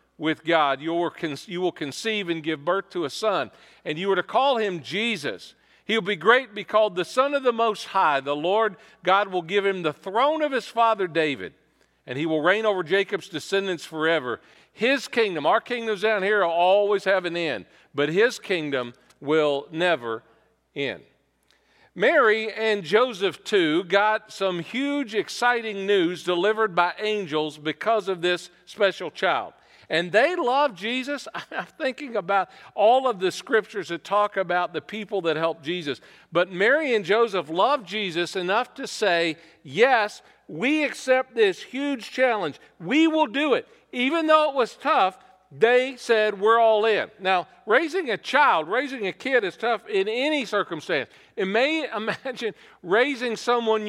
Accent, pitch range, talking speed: American, 175-240 Hz, 165 wpm